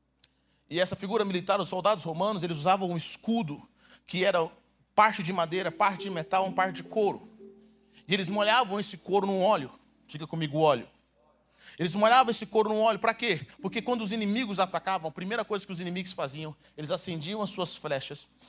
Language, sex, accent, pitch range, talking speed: Portuguese, male, Brazilian, 165-210 Hz, 190 wpm